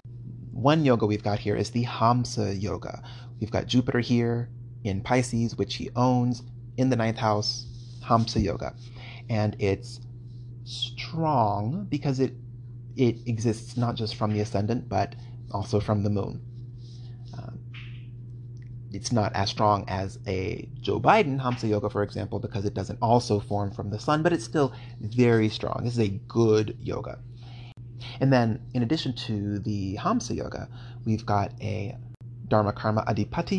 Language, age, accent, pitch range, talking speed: English, 30-49, American, 110-120 Hz, 155 wpm